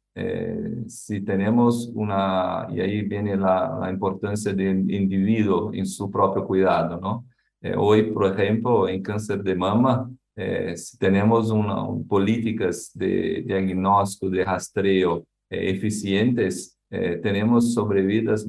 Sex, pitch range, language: male, 95-110 Hz, Spanish